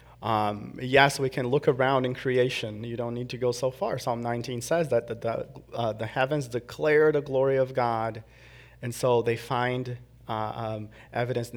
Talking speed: 190 wpm